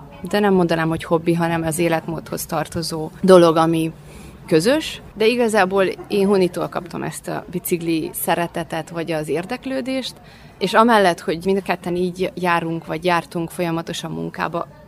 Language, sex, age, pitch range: Hungarian, female, 30-49, 165-200 Hz